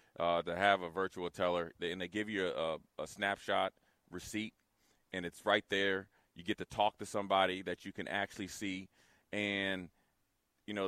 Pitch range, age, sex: 95-105 Hz, 30-49, male